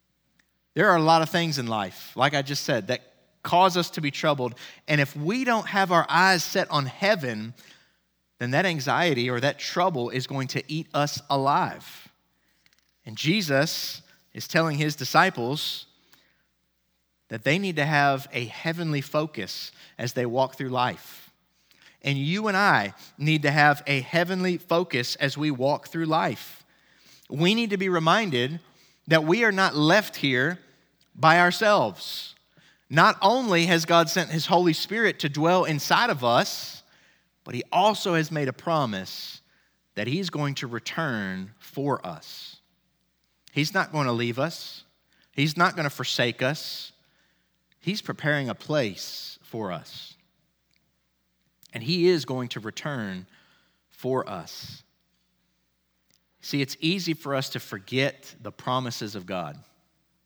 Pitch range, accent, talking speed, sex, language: 125-170 Hz, American, 150 wpm, male, English